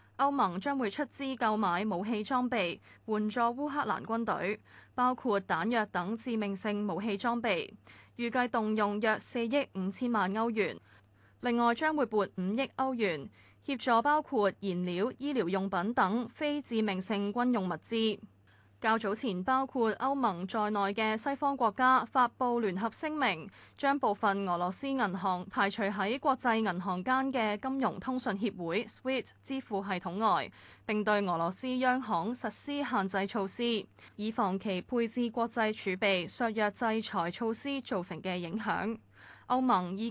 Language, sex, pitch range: Chinese, female, 195-250 Hz